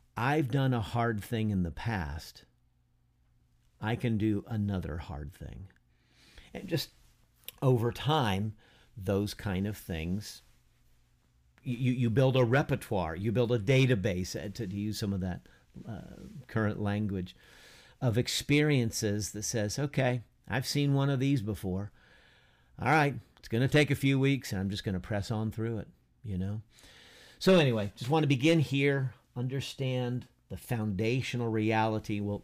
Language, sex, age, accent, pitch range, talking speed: English, male, 50-69, American, 95-125 Hz, 150 wpm